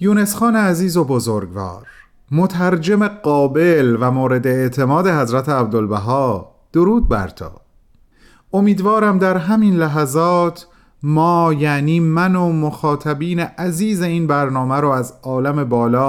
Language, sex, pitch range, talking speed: Persian, male, 120-190 Hz, 110 wpm